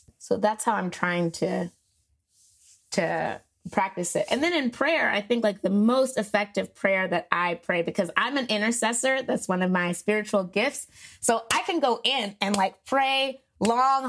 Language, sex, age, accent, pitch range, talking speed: English, female, 20-39, American, 185-235 Hz, 180 wpm